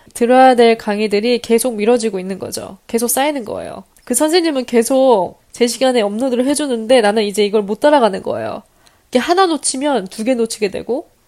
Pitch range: 210-260 Hz